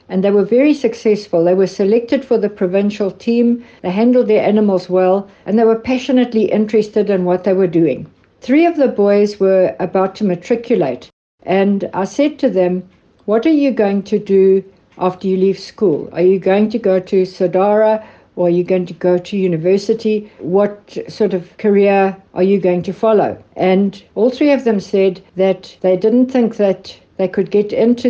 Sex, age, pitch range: female, 60-79, 190-225 Hz